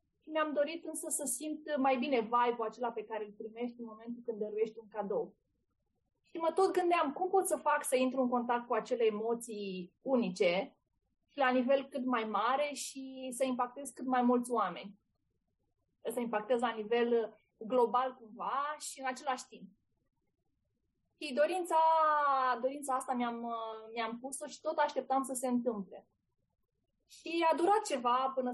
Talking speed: 155 wpm